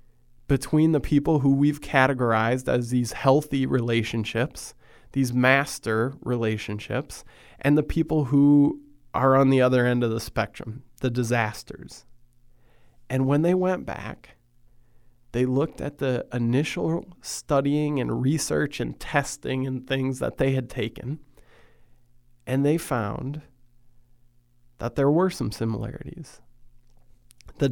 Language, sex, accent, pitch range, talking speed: English, male, American, 120-140 Hz, 125 wpm